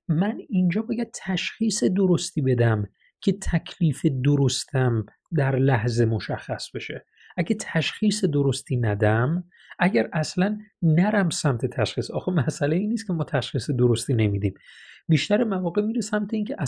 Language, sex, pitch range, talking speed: Persian, male, 130-185 Hz, 125 wpm